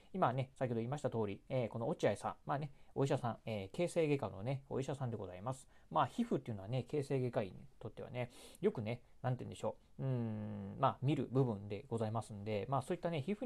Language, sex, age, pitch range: Japanese, male, 40-59, 110-155 Hz